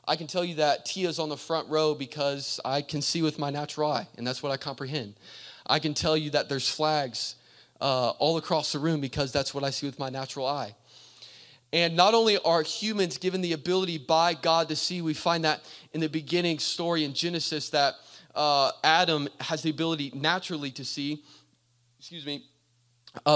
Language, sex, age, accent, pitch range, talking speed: English, male, 20-39, American, 135-165 Hz, 200 wpm